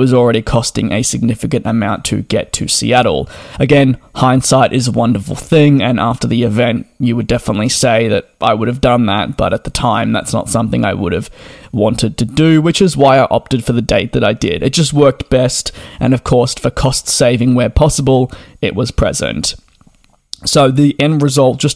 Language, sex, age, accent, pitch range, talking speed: English, male, 20-39, Australian, 120-140 Hz, 205 wpm